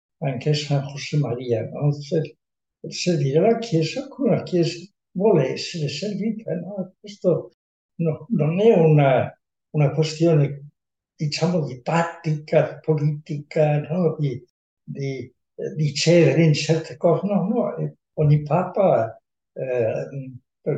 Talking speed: 120 wpm